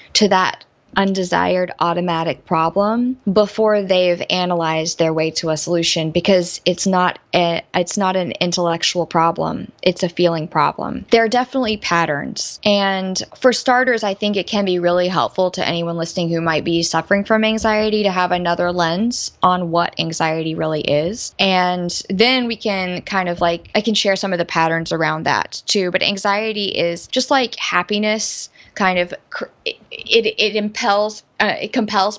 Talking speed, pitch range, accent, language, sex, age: 165 wpm, 175-215 Hz, American, English, female, 20-39